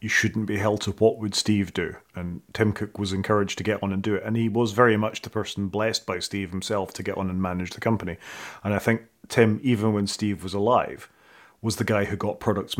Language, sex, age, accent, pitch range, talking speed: English, male, 30-49, British, 95-110 Hz, 250 wpm